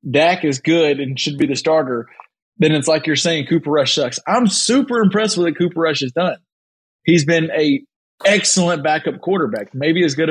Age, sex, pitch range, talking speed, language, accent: 30-49, male, 135-175 Hz, 200 wpm, English, American